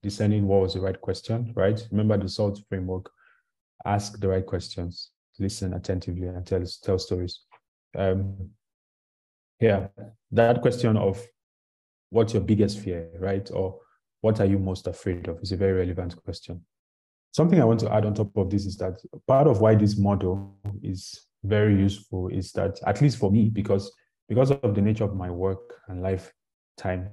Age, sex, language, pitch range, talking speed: 20-39, male, English, 90-105 Hz, 175 wpm